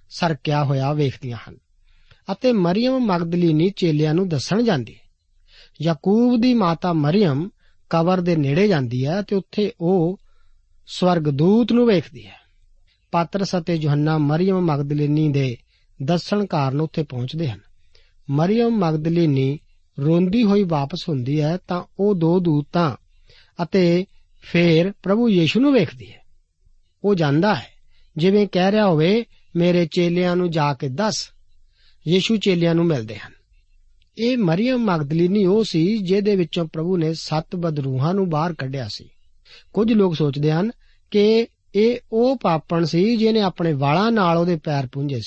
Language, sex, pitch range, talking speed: Punjabi, male, 140-195 Hz, 105 wpm